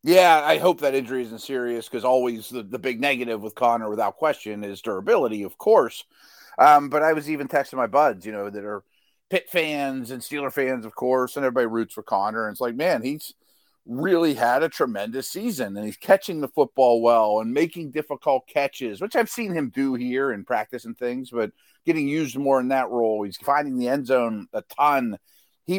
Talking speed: 210 wpm